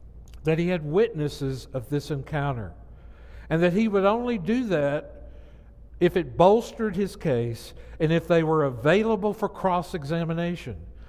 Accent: American